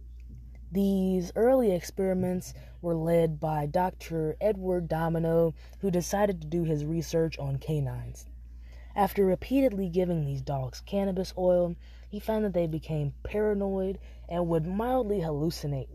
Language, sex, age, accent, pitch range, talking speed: English, female, 20-39, American, 145-185 Hz, 130 wpm